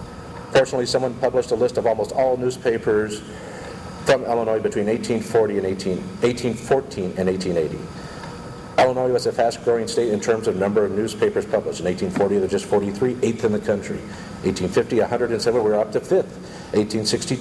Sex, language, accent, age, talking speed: male, English, American, 50-69, 155 wpm